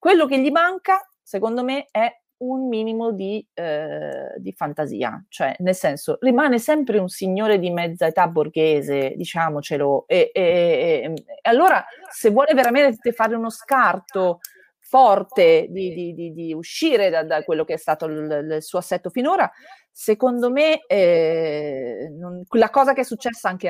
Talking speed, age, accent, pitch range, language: 145 wpm, 30-49, native, 165-265 Hz, Italian